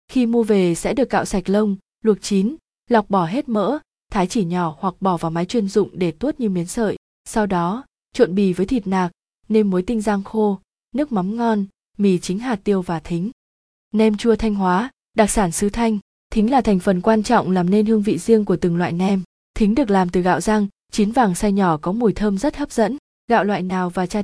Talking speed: 230 wpm